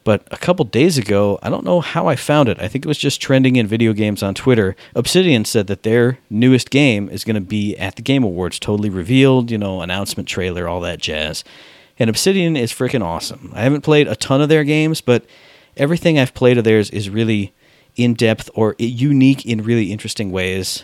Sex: male